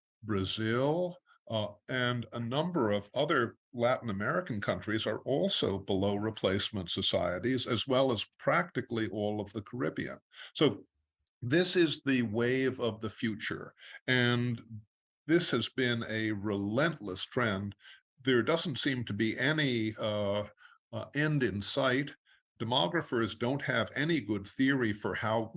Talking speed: 135 wpm